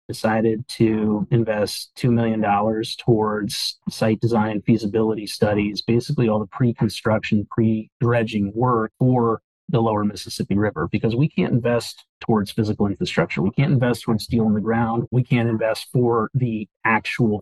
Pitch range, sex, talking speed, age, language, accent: 110-120 Hz, male, 150 wpm, 30-49, English, American